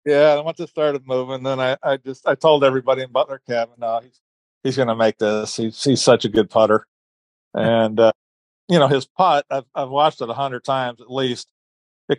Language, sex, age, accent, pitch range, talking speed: English, male, 50-69, American, 115-135 Hz, 220 wpm